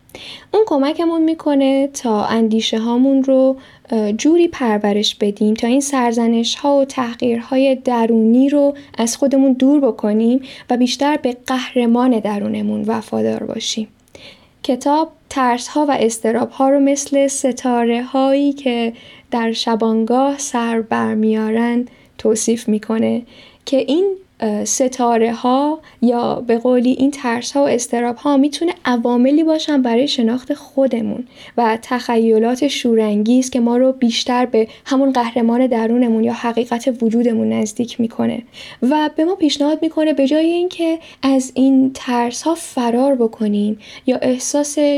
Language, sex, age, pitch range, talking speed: Persian, female, 10-29, 230-275 Hz, 130 wpm